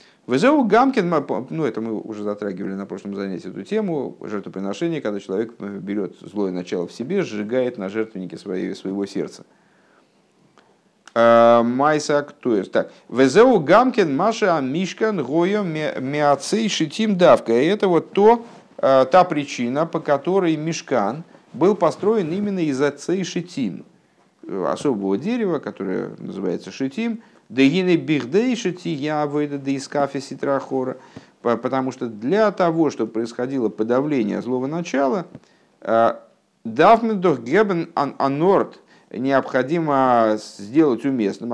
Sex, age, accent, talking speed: male, 50-69, native, 95 wpm